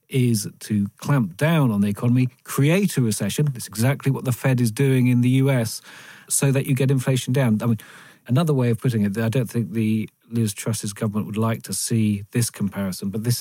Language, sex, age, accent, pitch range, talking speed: English, male, 40-59, British, 105-130 Hz, 215 wpm